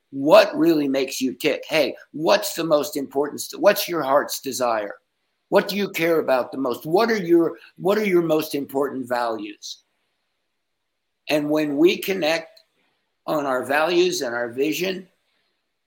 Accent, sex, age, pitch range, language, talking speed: American, male, 60-79, 150-220 Hz, English, 150 wpm